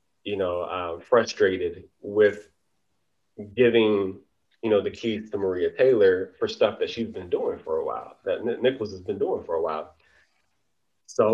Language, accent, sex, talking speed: English, American, male, 165 wpm